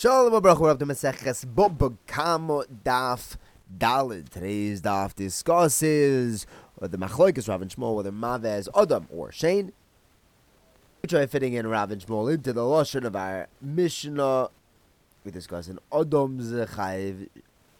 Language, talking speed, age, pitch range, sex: English, 145 wpm, 20-39, 100-145 Hz, male